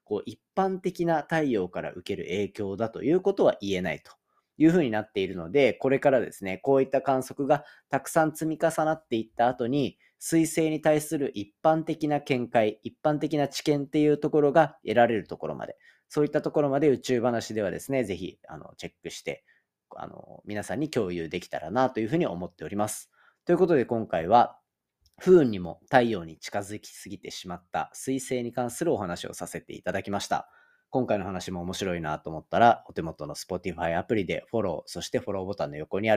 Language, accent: Japanese, native